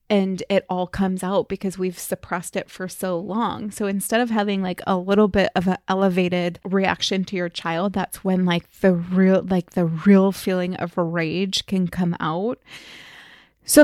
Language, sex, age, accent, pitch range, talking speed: English, female, 20-39, American, 185-210 Hz, 180 wpm